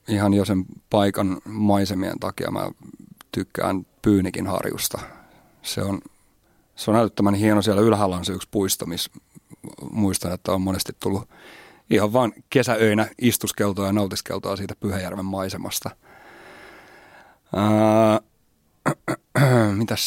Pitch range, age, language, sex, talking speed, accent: 95-110 Hz, 30-49, Finnish, male, 115 wpm, native